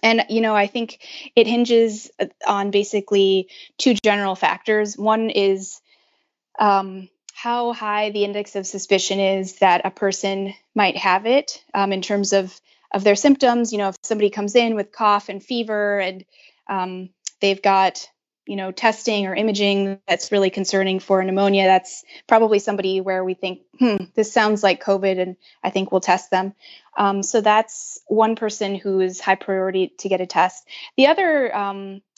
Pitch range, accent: 190-220 Hz, American